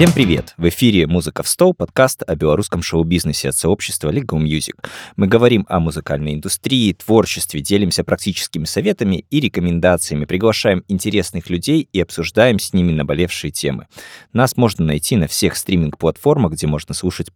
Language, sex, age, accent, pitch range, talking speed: Russian, male, 20-39, native, 80-100 Hz, 150 wpm